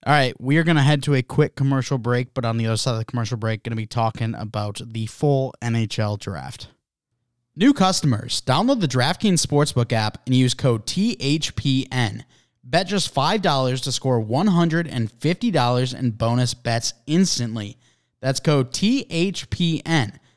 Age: 20-39